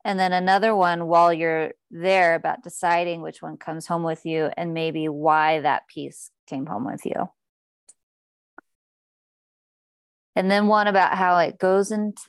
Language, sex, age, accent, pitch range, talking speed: English, female, 30-49, American, 160-190 Hz, 155 wpm